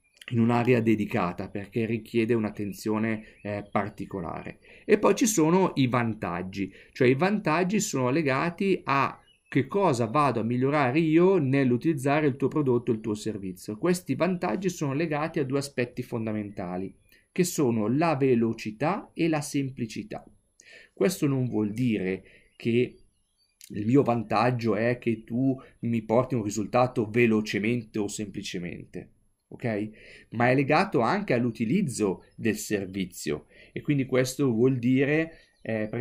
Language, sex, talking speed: Italian, male, 130 wpm